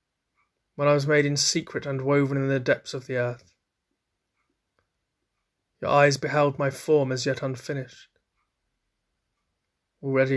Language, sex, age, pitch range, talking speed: English, male, 20-39, 130-145 Hz, 135 wpm